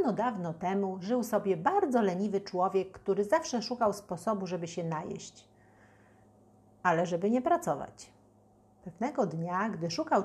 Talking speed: 130 wpm